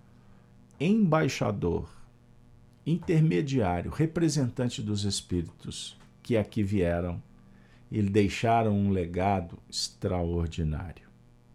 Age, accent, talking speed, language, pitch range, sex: 50-69, Brazilian, 70 wpm, Portuguese, 100-150 Hz, male